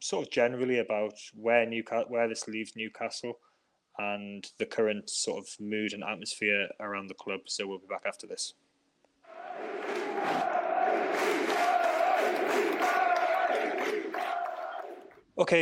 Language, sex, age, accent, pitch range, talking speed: English, male, 20-39, British, 115-150 Hz, 110 wpm